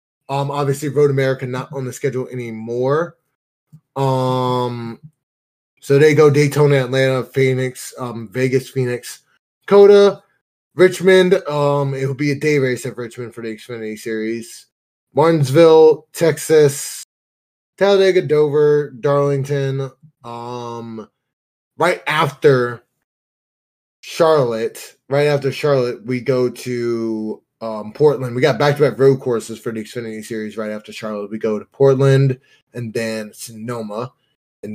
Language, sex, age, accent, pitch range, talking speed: English, male, 20-39, American, 115-145 Hz, 120 wpm